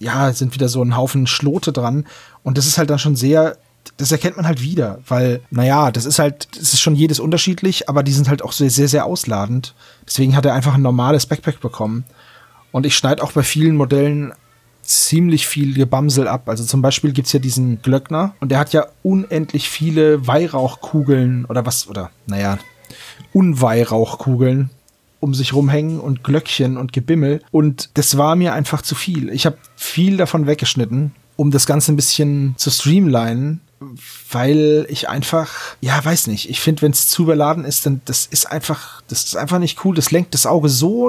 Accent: German